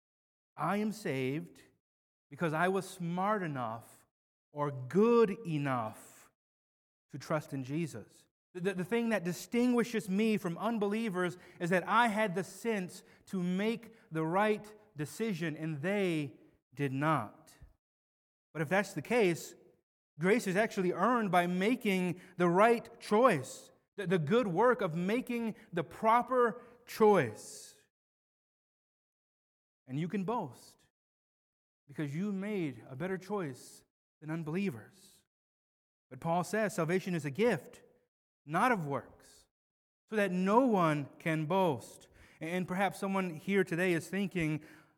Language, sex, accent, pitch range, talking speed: English, male, American, 160-215 Hz, 130 wpm